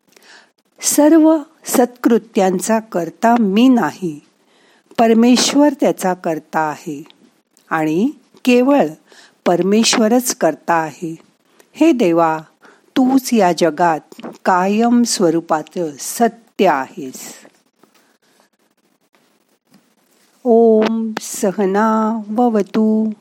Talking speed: 45 wpm